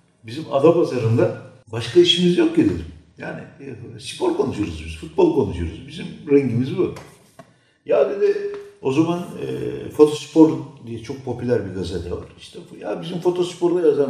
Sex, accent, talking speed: male, native, 145 wpm